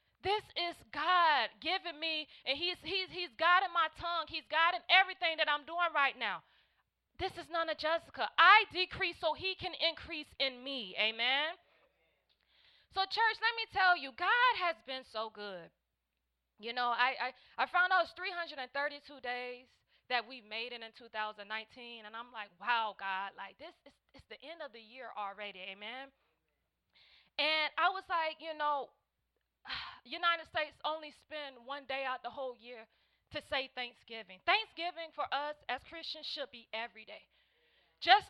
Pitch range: 240-335 Hz